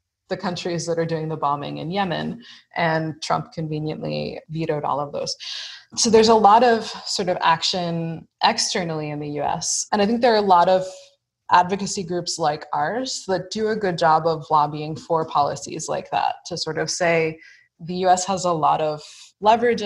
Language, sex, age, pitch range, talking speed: English, female, 20-39, 160-195 Hz, 185 wpm